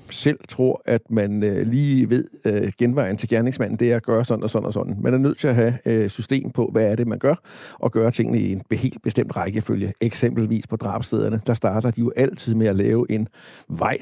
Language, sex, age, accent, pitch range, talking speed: Danish, male, 60-79, native, 110-130 Hz, 225 wpm